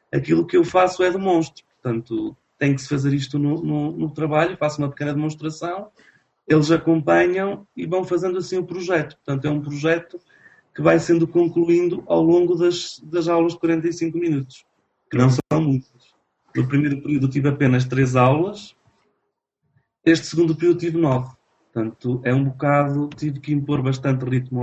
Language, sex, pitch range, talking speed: Portuguese, male, 130-165 Hz, 170 wpm